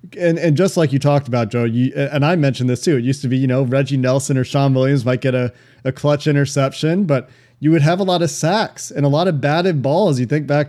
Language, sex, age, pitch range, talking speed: English, male, 30-49, 125-150 Hz, 270 wpm